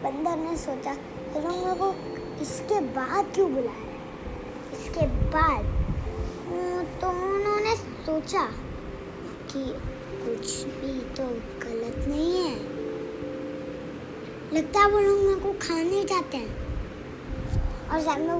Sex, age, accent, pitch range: male, 20-39, native, 305-385 Hz